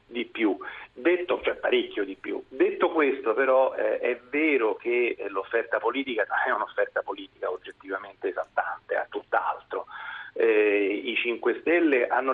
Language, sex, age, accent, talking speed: Italian, male, 40-59, native, 135 wpm